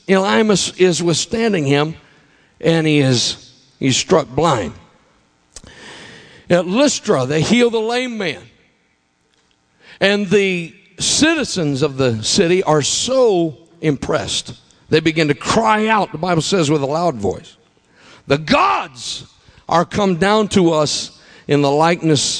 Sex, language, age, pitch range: male, English, 50-69, 130-170 Hz